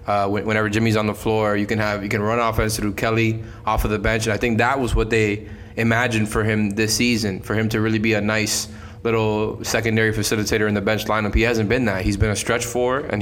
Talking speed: 250 wpm